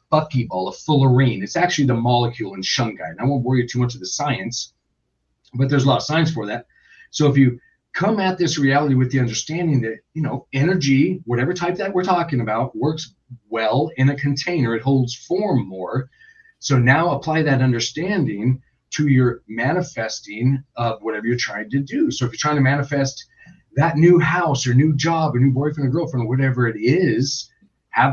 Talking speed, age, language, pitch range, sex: 195 wpm, 40-59, English, 125-155 Hz, male